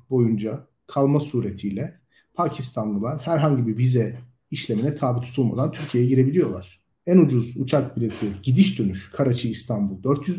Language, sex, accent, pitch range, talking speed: Turkish, male, native, 125-155 Hz, 120 wpm